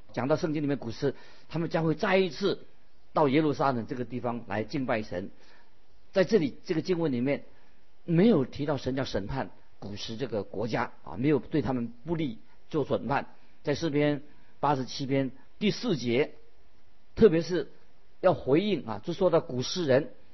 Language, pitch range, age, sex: Chinese, 120-155 Hz, 50-69, male